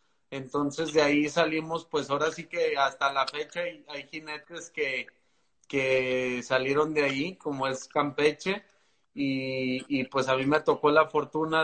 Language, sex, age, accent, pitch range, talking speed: Spanish, male, 30-49, Mexican, 130-150 Hz, 160 wpm